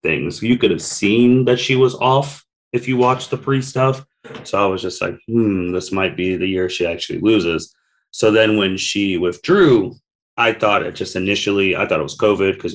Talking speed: 210 wpm